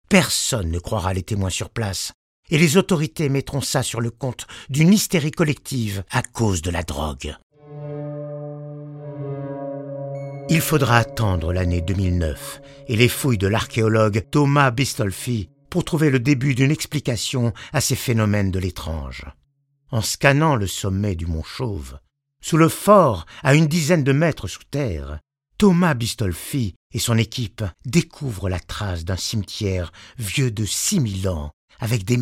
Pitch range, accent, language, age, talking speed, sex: 95-145 Hz, French, French, 60-79, 145 wpm, male